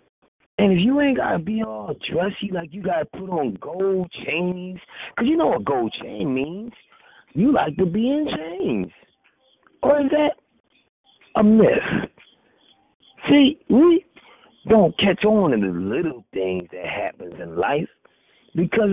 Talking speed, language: 160 wpm, English